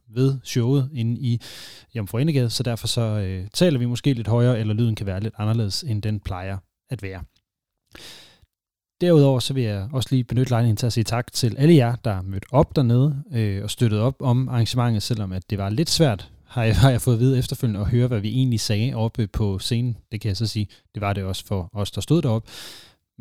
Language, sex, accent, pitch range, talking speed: Danish, male, native, 105-125 Hz, 225 wpm